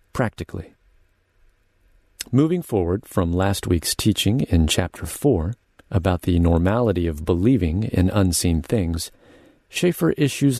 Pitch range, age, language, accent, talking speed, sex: 90-115 Hz, 40-59, English, American, 115 wpm, male